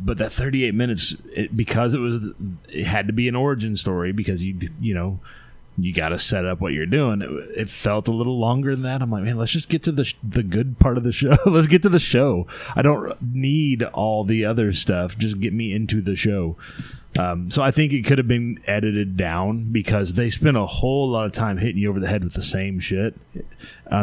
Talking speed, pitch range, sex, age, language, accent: 240 wpm, 95-125 Hz, male, 30-49, English, American